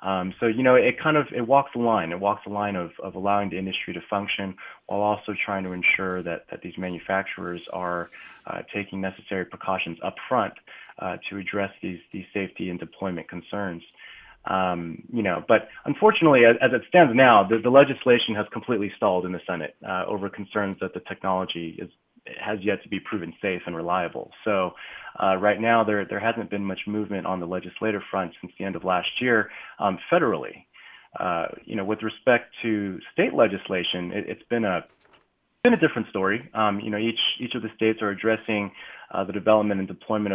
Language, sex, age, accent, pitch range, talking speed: English, male, 20-39, American, 95-110 Hz, 200 wpm